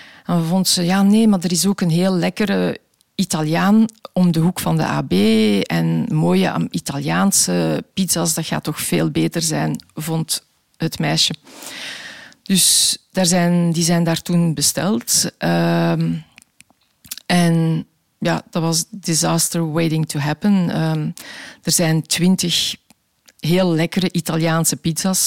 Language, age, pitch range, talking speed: Dutch, 40-59, 165-190 Hz, 140 wpm